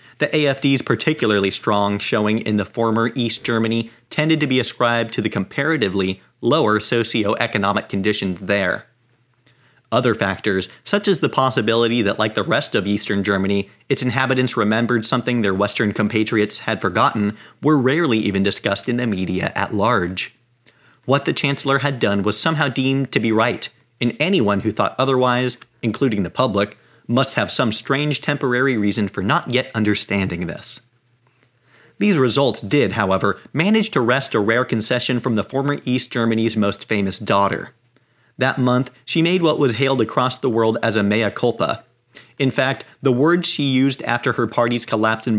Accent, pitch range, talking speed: American, 105-135 Hz, 165 wpm